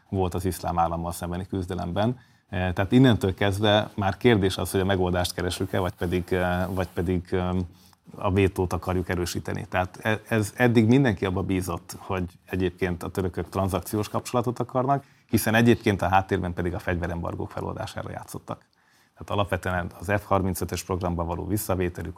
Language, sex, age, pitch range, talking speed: Hungarian, male, 30-49, 90-105 Hz, 145 wpm